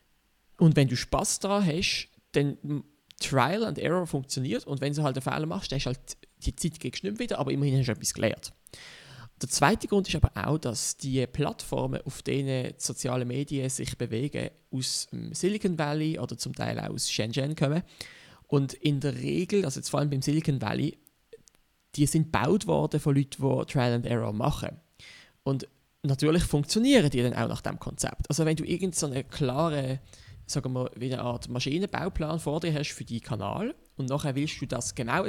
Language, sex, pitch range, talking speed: German, male, 125-155 Hz, 195 wpm